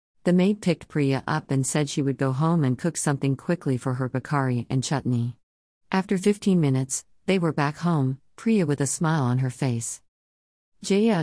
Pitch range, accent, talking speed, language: 130-160 Hz, American, 185 wpm, English